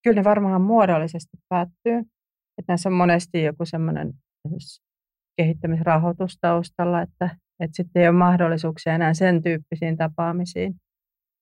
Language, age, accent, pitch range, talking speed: Finnish, 40-59, native, 160-190 Hz, 115 wpm